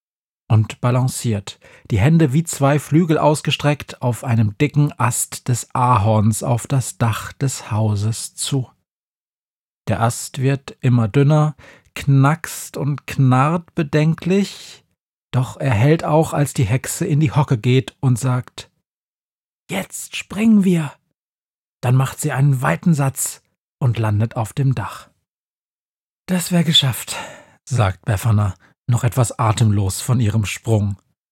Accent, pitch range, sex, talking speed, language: German, 115-145 Hz, male, 130 wpm, German